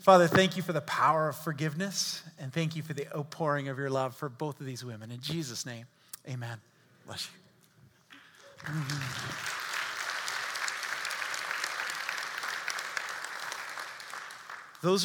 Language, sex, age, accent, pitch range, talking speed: English, male, 40-59, American, 150-195 Hz, 115 wpm